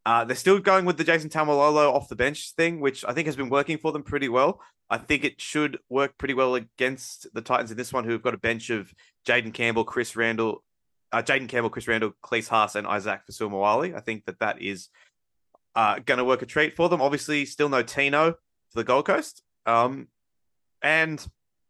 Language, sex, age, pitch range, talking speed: English, male, 20-39, 110-145 Hz, 215 wpm